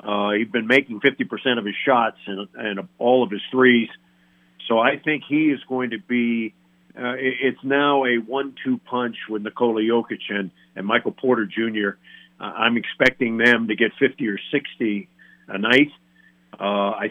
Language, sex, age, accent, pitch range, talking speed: English, male, 50-69, American, 105-135 Hz, 170 wpm